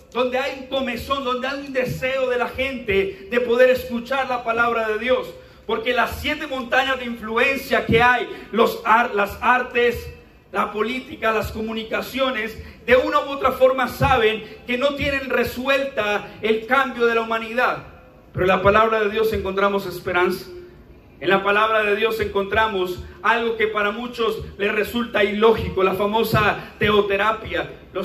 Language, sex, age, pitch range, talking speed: Spanish, male, 40-59, 200-255 Hz, 155 wpm